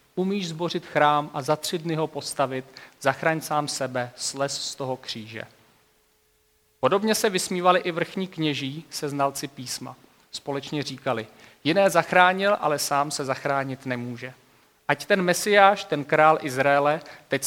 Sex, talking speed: male, 140 wpm